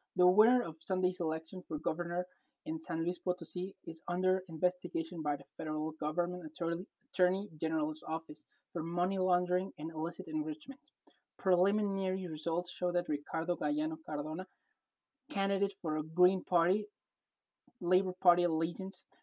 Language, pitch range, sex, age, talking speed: English, 170-200 Hz, male, 20-39, 135 wpm